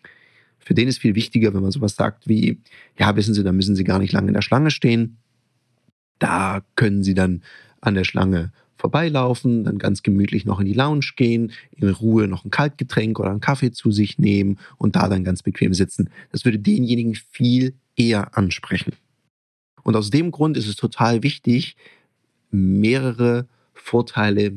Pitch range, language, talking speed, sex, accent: 100-130 Hz, German, 175 wpm, male, German